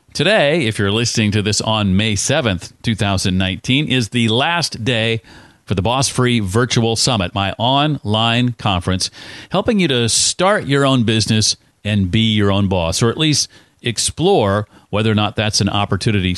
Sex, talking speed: male, 165 wpm